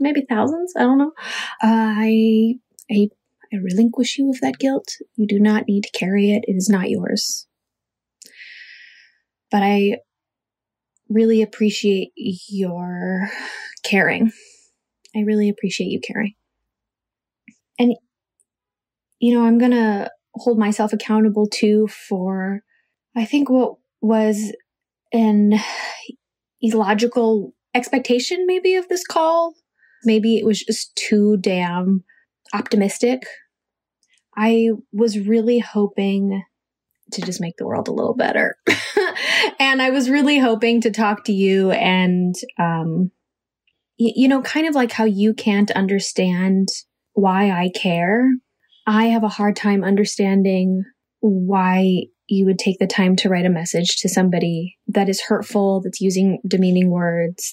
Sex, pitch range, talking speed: female, 195-235 Hz, 130 wpm